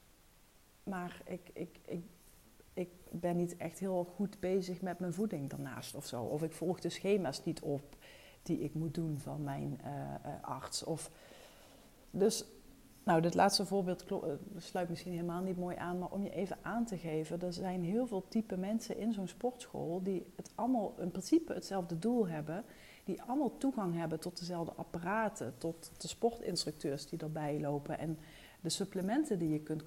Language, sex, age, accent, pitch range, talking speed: Dutch, female, 40-59, Dutch, 160-205 Hz, 175 wpm